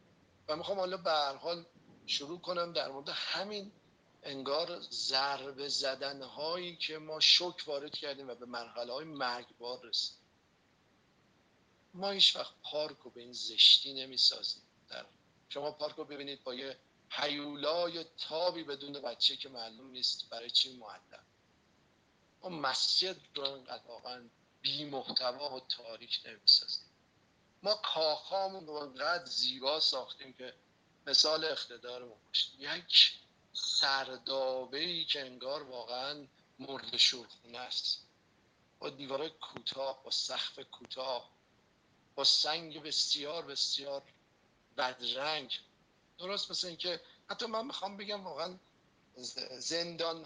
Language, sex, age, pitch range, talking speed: Persian, male, 50-69, 130-165 Hz, 120 wpm